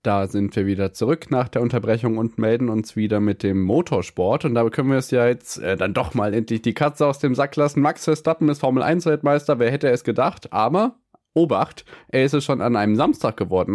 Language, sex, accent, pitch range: German, male, German, 105-130 Hz